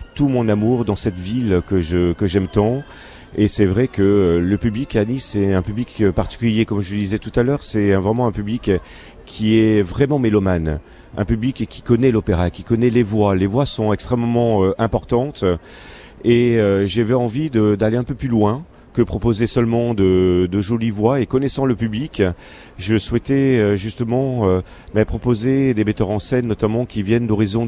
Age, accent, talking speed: 40-59, French, 185 wpm